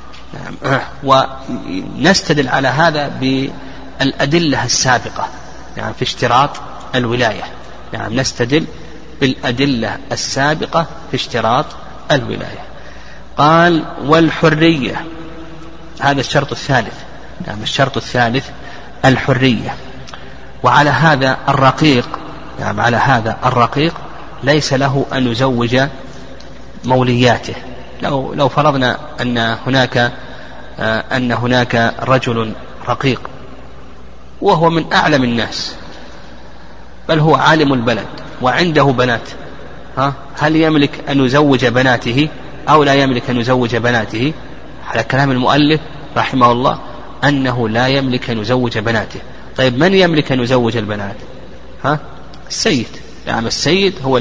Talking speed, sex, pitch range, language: 100 wpm, male, 120-145 Hz, Arabic